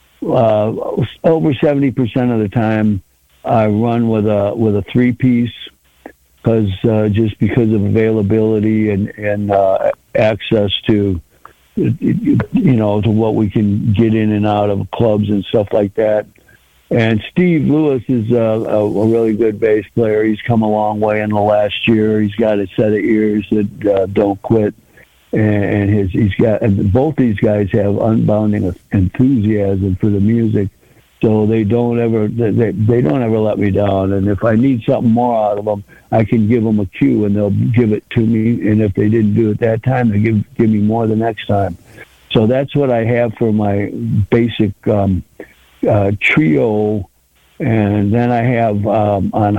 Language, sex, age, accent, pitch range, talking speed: English, male, 60-79, American, 105-115 Hz, 180 wpm